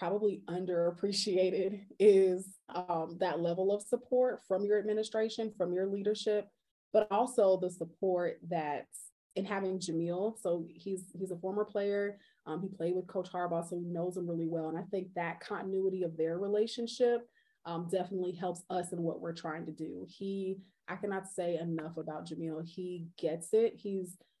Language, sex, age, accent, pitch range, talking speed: English, female, 20-39, American, 170-205 Hz, 170 wpm